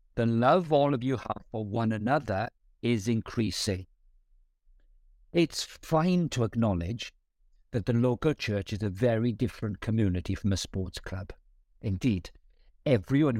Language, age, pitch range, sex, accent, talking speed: English, 60-79, 95-130 Hz, male, British, 135 wpm